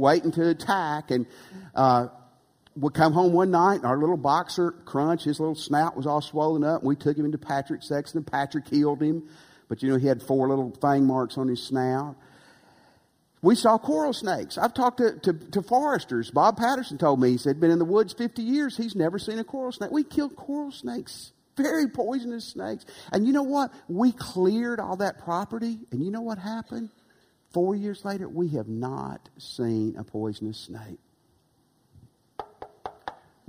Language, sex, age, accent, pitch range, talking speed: English, male, 50-69, American, 125-195 Hz, 190 wpm